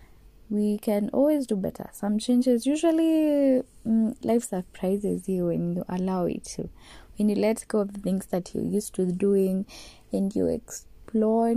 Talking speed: 165 wpm